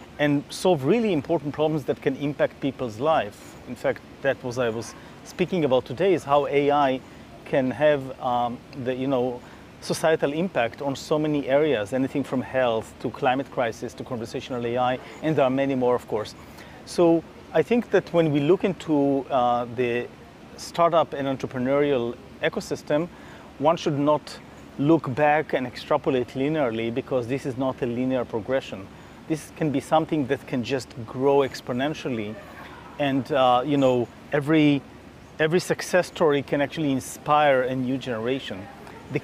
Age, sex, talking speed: 40-59, male, 160 wpm